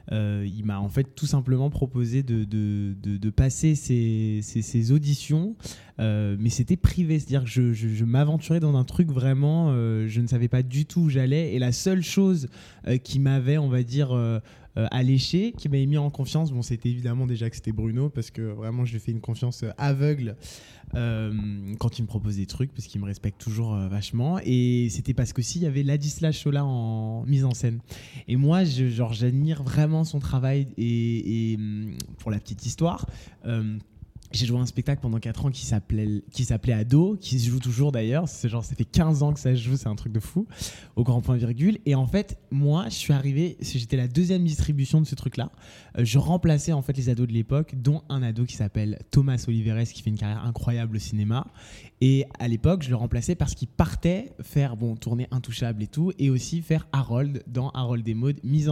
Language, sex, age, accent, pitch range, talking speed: French, male, 20-39, French, 115-145 Hz, 215 wpm